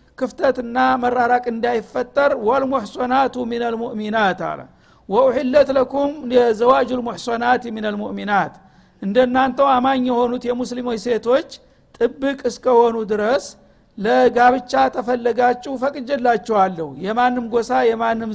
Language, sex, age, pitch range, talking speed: Amharic, male, 60-79, 225-260 Hz, 100 wpm